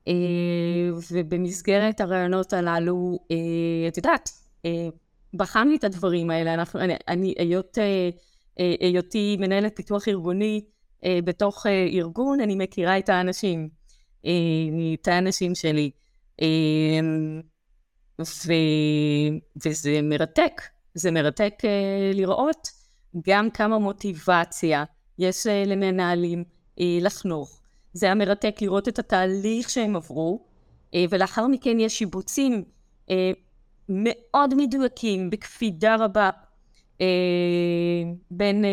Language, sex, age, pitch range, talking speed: Hebrew, female, 20-39, 160-200 Hz, 85 wpm